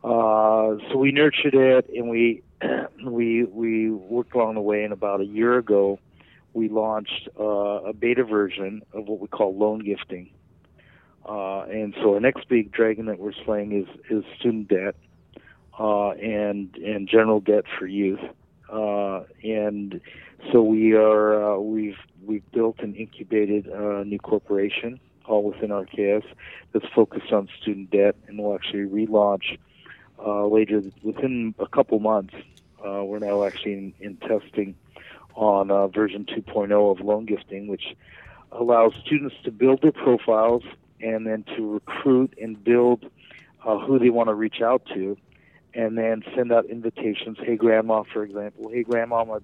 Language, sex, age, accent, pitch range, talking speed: English, male, 50-69, American, 100-115 Hz, 160 wpm